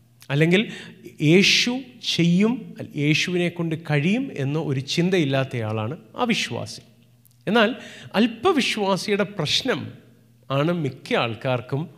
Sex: male